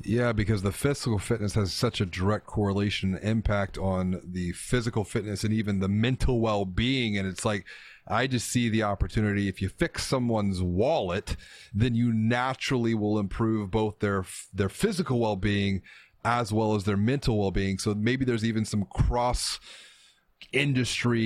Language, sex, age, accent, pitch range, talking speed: English, male, 30-49, American, 100-115 Hz, 165 wpm